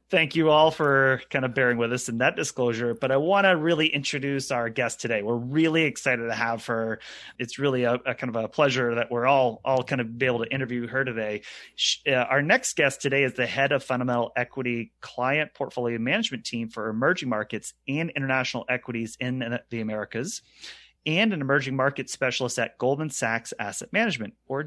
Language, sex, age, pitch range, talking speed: English, male, 30-49, 115-140 Hz, 200 wpm